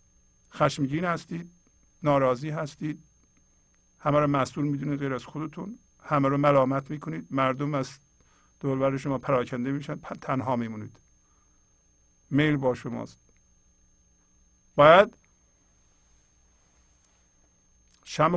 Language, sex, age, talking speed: English, male, 50-69, 90 wpm